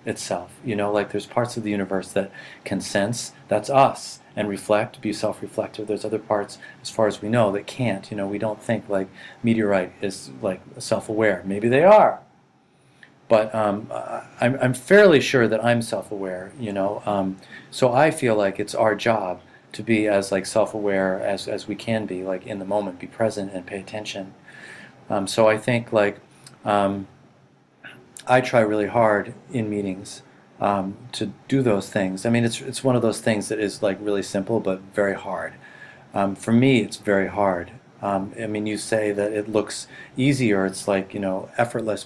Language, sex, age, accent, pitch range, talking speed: English, male, 40-59, American, 100-115 Hz, 190 wpm